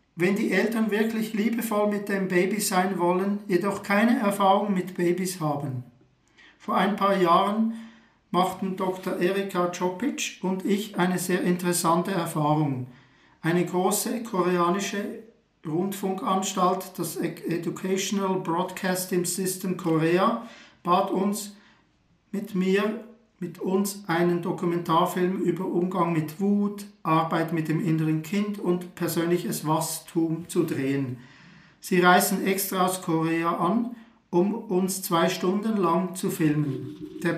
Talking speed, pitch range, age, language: 120 wpm, 170-200 Hz, 50-69, German